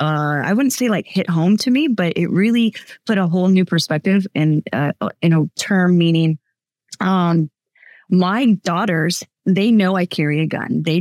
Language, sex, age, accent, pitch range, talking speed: English, female, 20-39, American, 160-200 Hz, 180 wpm